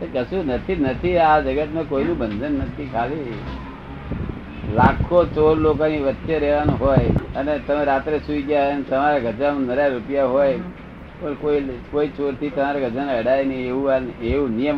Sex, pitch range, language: male, 120-145 Hz, Gujarati